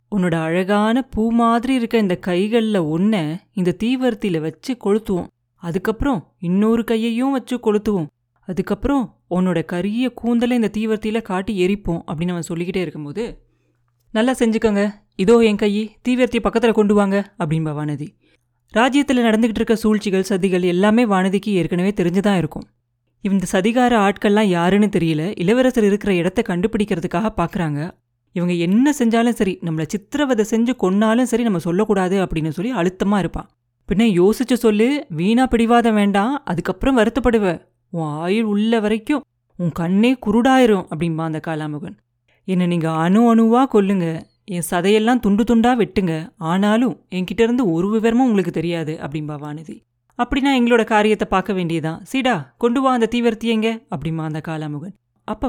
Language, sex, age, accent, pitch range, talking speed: Tamil, female, 30-49, native, 170-230 Hz, 135 wpm